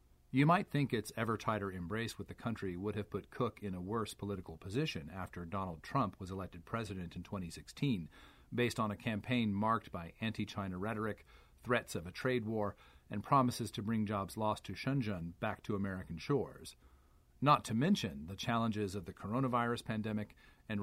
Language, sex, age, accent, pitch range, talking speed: English, male, 40-59, American, 90-120 Hz, 180 wpm